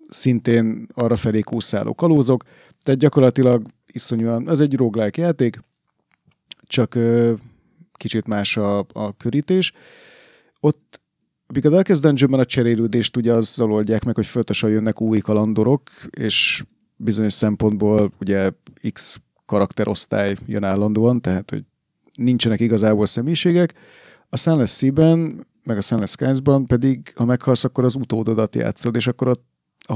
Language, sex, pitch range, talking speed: Hungarian, male, 110-130 Hz, 125 wpm